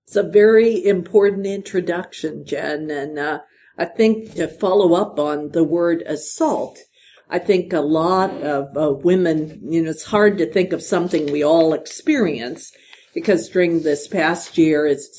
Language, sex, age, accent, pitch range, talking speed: English, female, 50-69, American, 155-215 Hz, 160 wpm